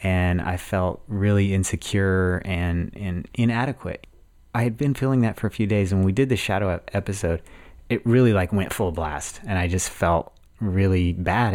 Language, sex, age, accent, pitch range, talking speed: English, male, 30-49, American, 90-105 Hz, 185 wpm